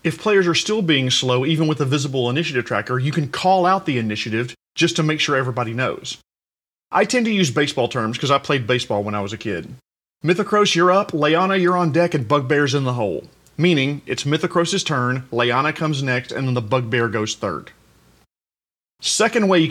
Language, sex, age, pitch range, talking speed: English, male, 40-59, 125-170 Hz, 205 wpm